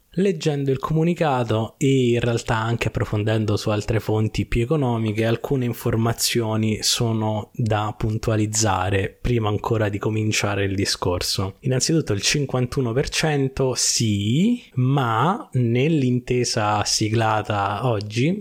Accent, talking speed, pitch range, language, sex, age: native, 105 wpm, 100-125 Hz, Italian, male, 20-39